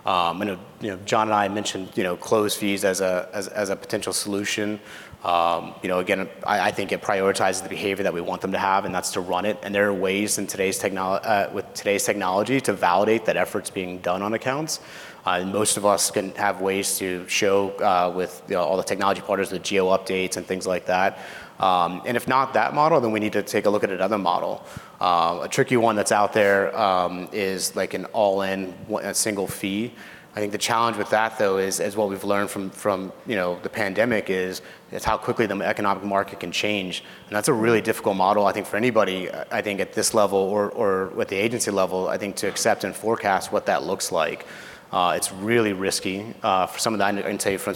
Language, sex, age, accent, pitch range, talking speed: English, male, 30-49, American, 95-105 Hz, 235 wpm